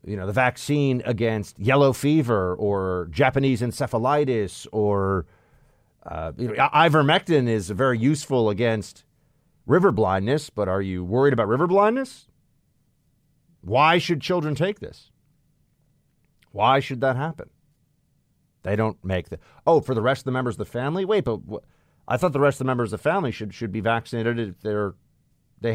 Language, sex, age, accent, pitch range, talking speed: English, male, 40-59, American, 95-140 Hz, 165 wpm